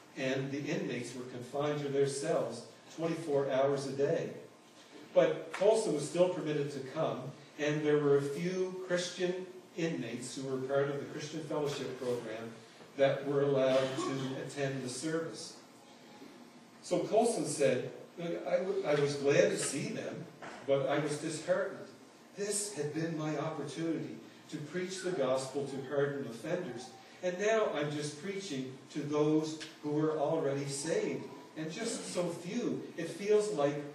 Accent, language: American, English